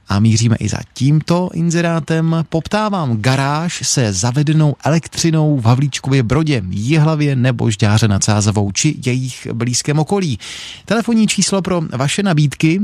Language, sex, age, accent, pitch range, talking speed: Czech, male, 30-49, native, 115-160 Hz, 130 wpm